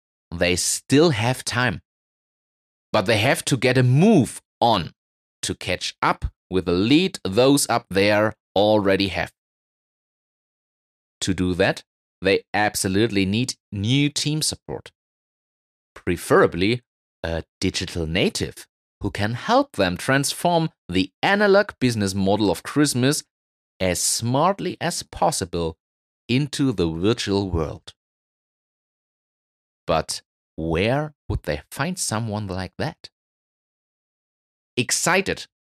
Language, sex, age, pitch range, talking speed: German, male, 30-49, 90-135 Hz, 110 wpm